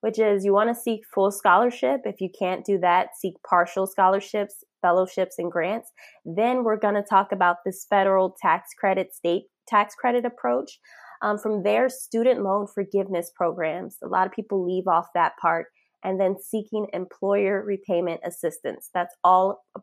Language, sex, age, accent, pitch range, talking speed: English, female, 20-39, American, 180-210 Hz, 165 wpm